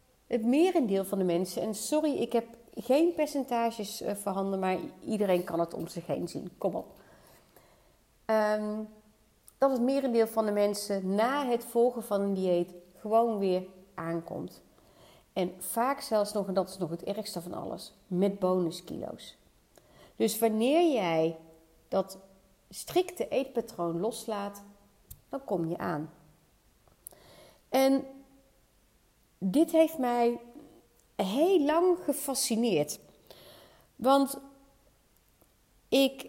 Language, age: Dutch, 40-59